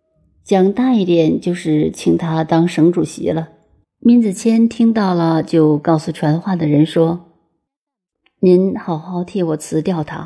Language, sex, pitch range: Chinese, female, 160-200 Hz